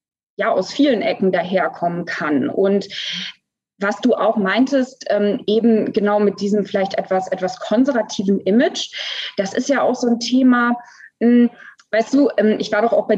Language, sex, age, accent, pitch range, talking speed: German, female, 20-39, German, 200-245 Hz, 155 wpm